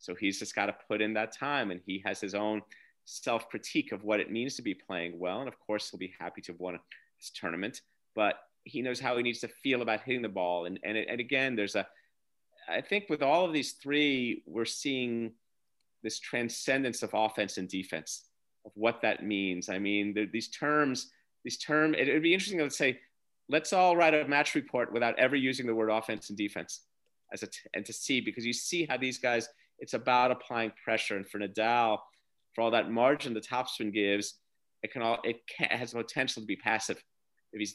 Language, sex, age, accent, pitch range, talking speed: English, male, 30-49, American, 100-125 Hz, 220 wpm